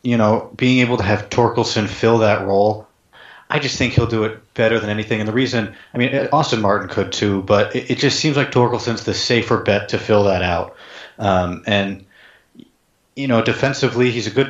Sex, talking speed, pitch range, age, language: male, 205 wpm, 105-120 Hz, 30-49, English